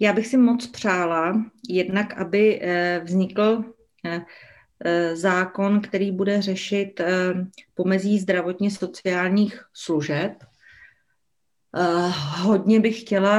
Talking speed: 75 wpm